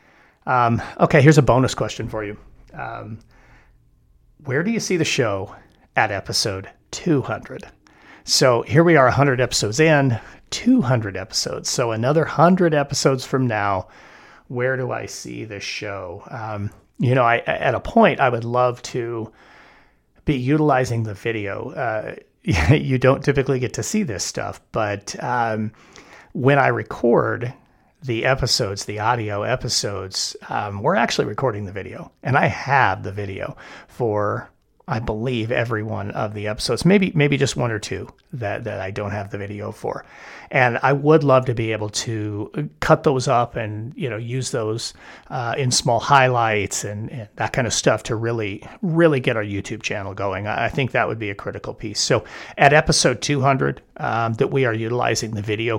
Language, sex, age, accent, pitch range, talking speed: English, male, 40-59, American, 105-135 Hz, 170 wpm